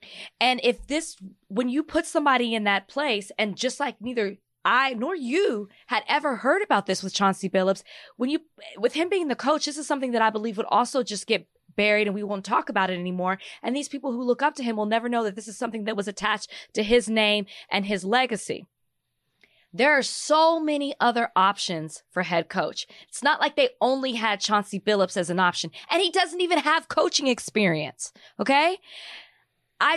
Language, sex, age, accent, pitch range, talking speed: English, female, 20-39, American, 205-265 Hz, 205 wpm